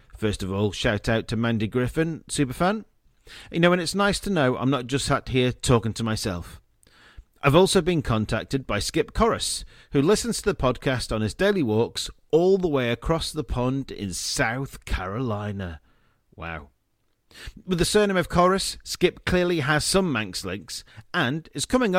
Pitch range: 110-160 Hz